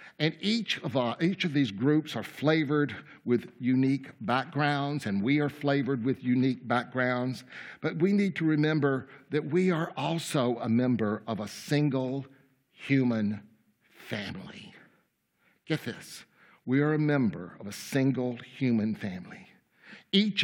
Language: English